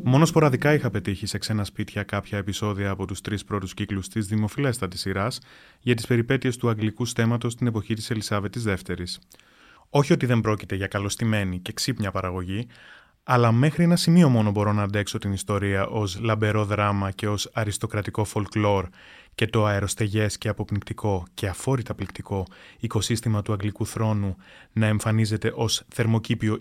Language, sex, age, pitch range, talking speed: Greek, male, 20-39, 100-120 Hz, 160 wpm